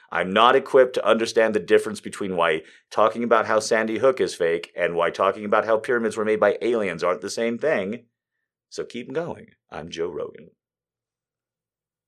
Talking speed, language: 180 wpm, English